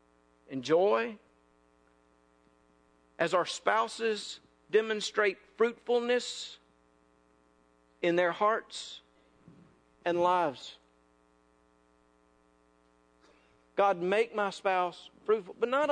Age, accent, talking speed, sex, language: 50-69, American, 70 wpm, male, English